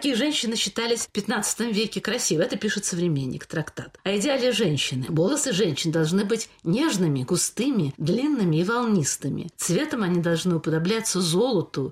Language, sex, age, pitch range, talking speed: Russian, female, 50-69, 170-220 Hz, 140 wpm